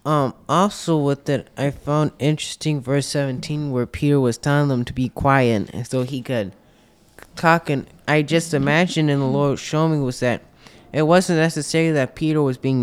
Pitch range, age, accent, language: 130-155 Hz, 20-39, American, English